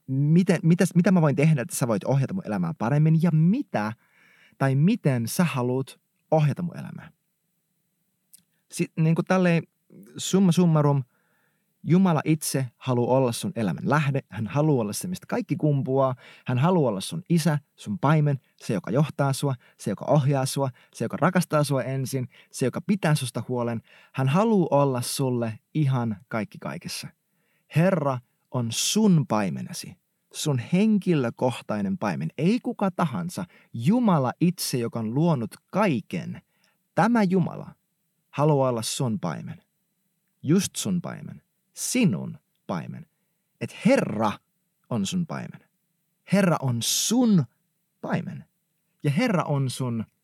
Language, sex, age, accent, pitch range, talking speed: Finnish, male, 30-49, native, 135-185 Hz, 135 wpm